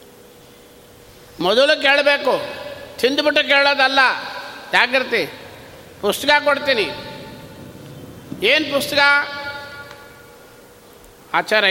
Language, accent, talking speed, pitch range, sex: Kannada, native, 50 wpm, 240-285 Hz, male